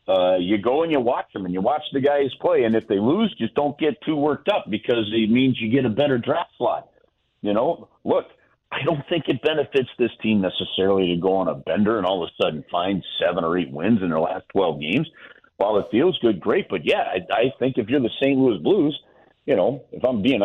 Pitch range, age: 110-140 Hz, 50-69